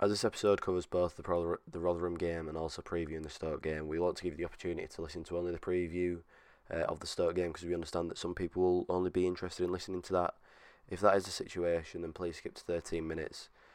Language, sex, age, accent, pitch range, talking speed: English, male, 20-39, British, 85-95 Hz, 260 wpm